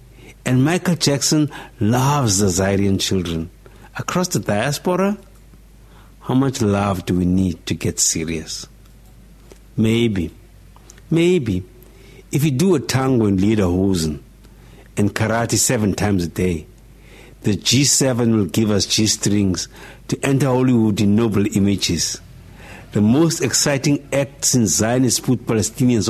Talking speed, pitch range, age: 125 wpm, 100-130 Hz, 60-79